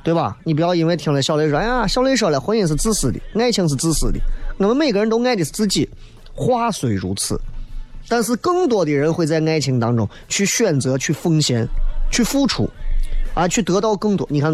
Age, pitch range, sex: 20-39, 125-200 Hz, male